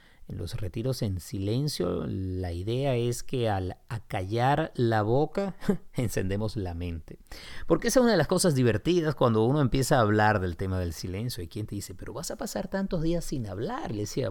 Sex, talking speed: male, 200 wpm